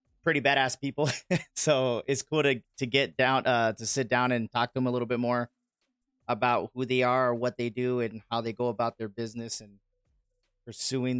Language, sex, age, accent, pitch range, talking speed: English, male, 30-49, American, 115-145 Hz, 205 wpm